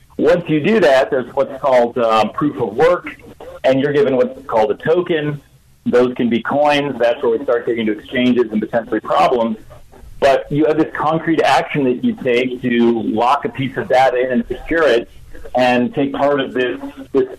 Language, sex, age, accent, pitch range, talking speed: English, male, 40-59, American, 125-180 Hz, 195 wpm